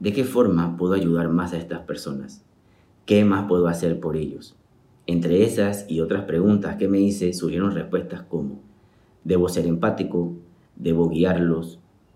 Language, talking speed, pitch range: Spanish, 155 wpm, 85-100 Hz